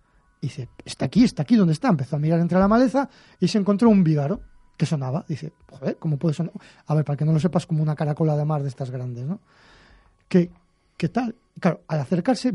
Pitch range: 150-205 Hz